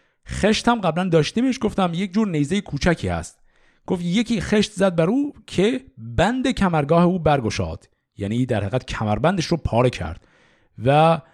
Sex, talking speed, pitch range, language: male, 150 wpm, 120-175 Hz, Persian